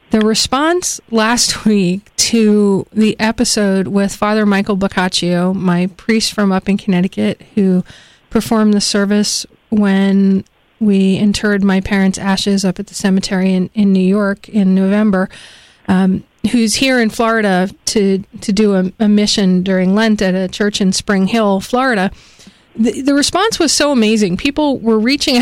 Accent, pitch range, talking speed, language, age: American, 195-230 Hz, 155 wpm, English, 40-59